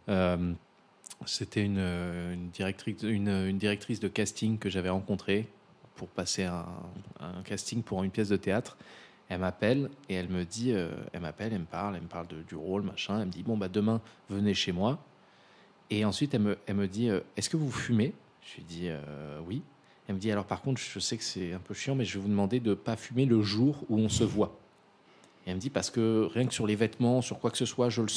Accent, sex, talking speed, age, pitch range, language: French, male, 240 wpm, 20-39, 95-115 Hz, French